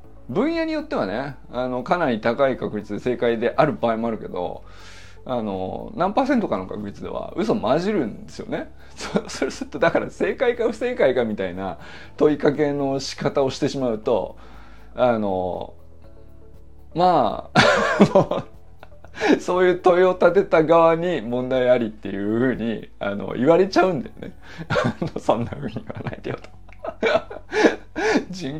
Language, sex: Japanese, male